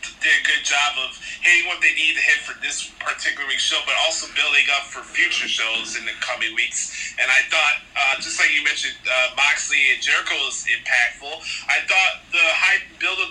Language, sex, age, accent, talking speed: English, male, 30-49, American, 210 wpm